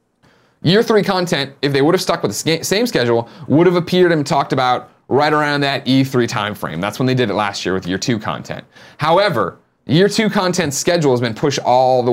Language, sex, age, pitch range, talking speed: English, male, 30-49, 110-140 Hz, 225 wpm